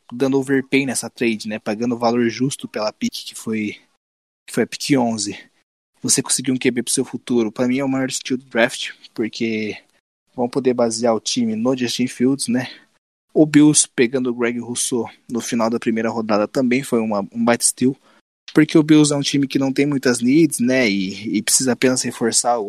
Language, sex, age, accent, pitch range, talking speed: Portuguese, male, 20-39, Brazilian, 115-135 Hz, 200 wpm